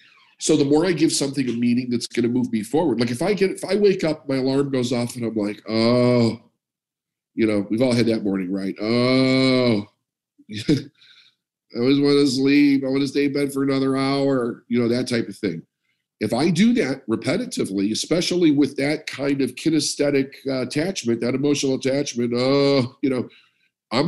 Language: English